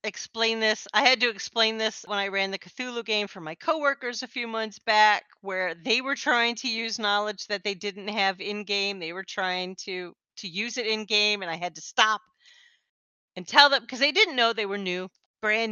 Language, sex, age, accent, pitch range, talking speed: English, female, 40-59, American, 195-250 Hz, 220 wpm